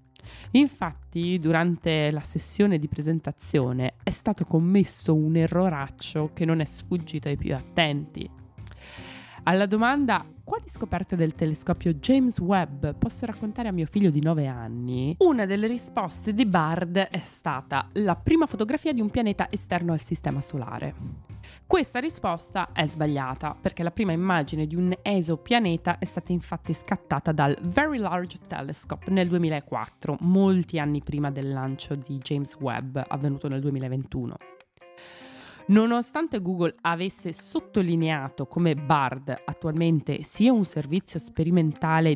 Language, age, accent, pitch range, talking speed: Italian, 20-39, native, 145-185 Hz, 135 wpm